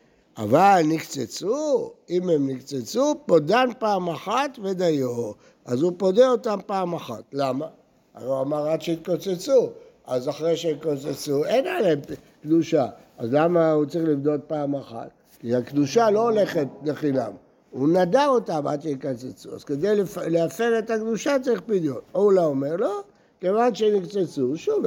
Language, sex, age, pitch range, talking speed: Hebrew, male, 60-79, 160-225 Hz, 140 wpm